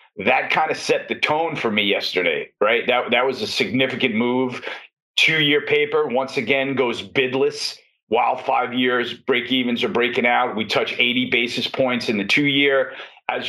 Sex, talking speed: male, 180 wpm